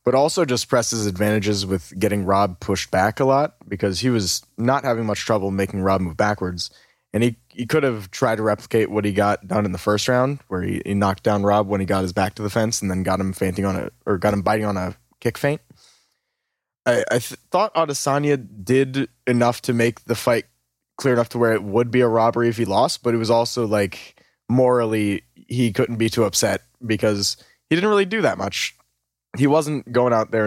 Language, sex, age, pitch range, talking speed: English, male, 20-39, 100-125 Hz, 225 wpm